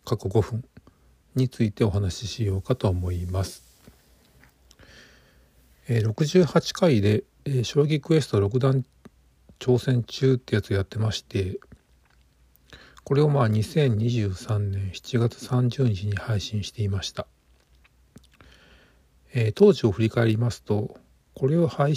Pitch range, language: 90-125 Hz, Japanese